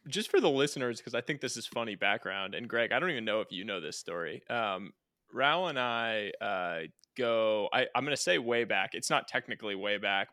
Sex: male